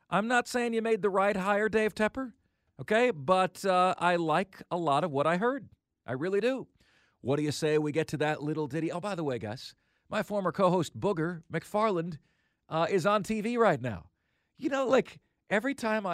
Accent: American